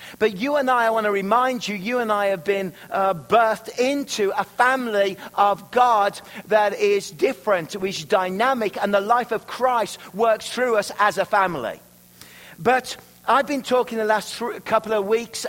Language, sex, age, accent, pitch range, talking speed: English, male, 40-59, British, 190-225 Hz, 180 wpm